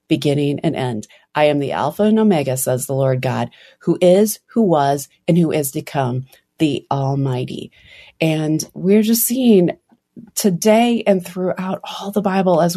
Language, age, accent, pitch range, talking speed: English, 30-49, American, 150-195 Hz, 165 wpm